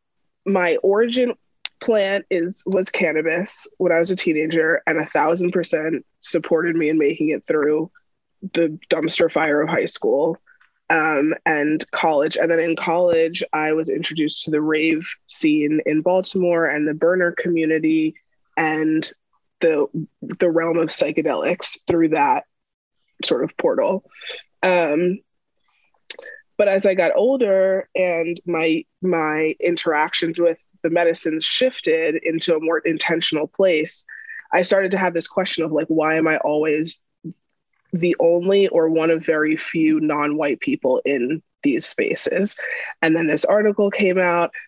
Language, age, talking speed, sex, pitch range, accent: English, 20-39, 145 wpm, female, 160-195 Hz, American